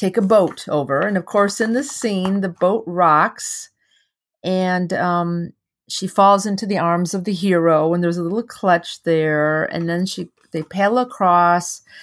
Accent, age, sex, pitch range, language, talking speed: American, 40-59, female, 160-195 Hz, English, 175 wpm